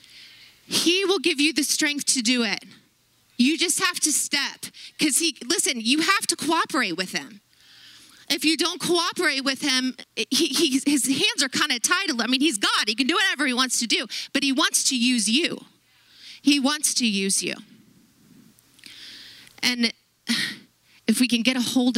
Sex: female